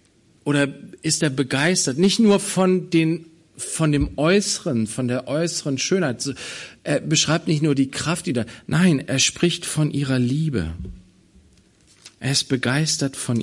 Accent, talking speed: German, 145 wpm